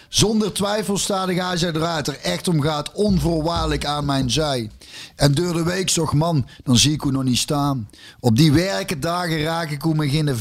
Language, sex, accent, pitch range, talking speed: Dutch, male, Dutch, 135-175 Hz, 210 wpm